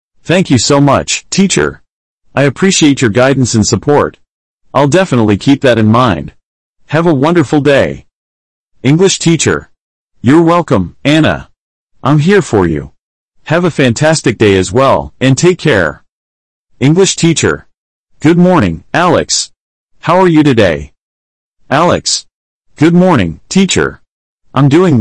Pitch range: 115-160 Hz